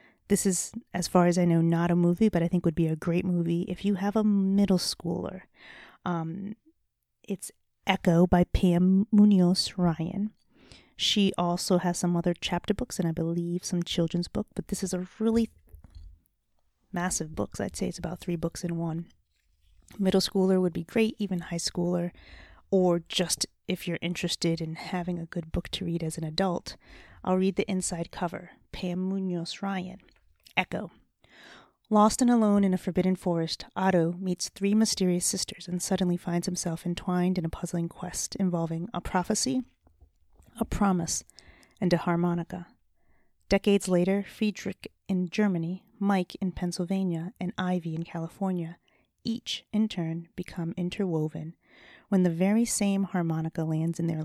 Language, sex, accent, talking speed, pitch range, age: English, female, American, 160 wpm, 170-195 Hz, 30-49